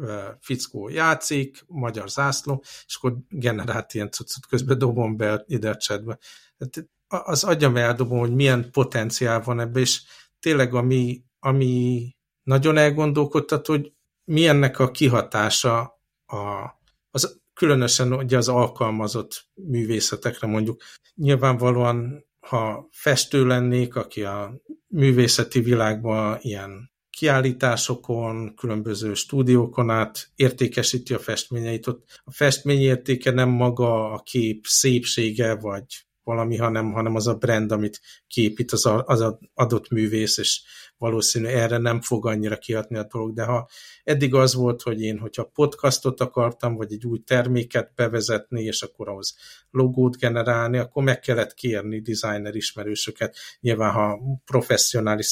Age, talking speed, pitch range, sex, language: 60-79, 125 wpm, 110-130 Hz, male, Hungarian